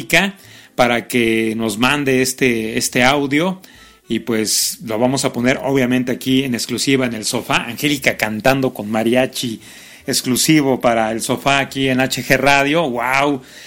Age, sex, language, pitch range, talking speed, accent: 40-59, male, Spanish, 115-140 Hz, 145 wpm, Mexican